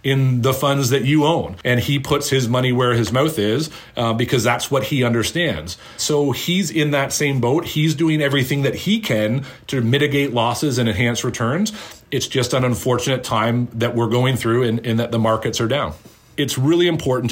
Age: 40-59